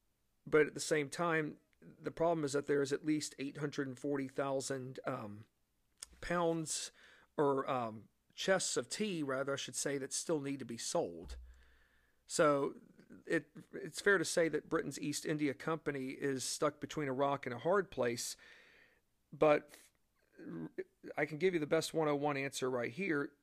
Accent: American